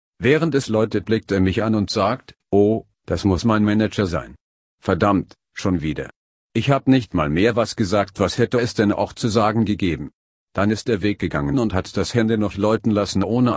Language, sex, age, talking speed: English, male, 50-69, 205 wpm